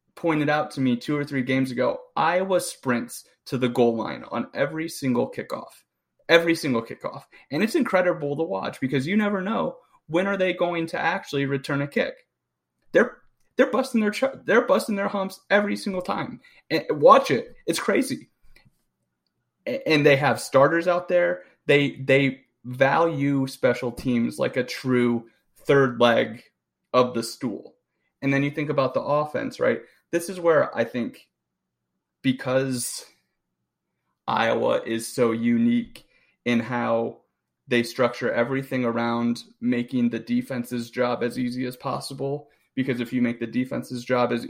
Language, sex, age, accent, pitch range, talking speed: English, male, 30-49, American, 120-170 Hz, 155 wpm